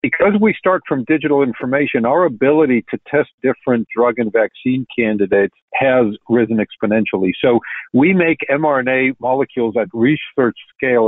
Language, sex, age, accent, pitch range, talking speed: English, male, 50-69, American, 115-145 Hz, 140 wpm